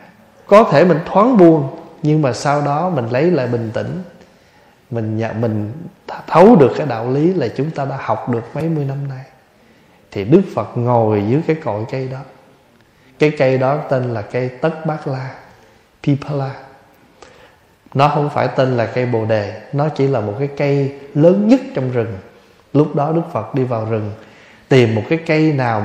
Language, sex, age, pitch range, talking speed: Vietnamese, male, 20-39, 115-155 Hz, 190 wpm